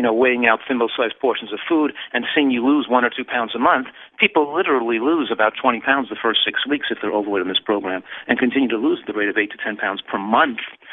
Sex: male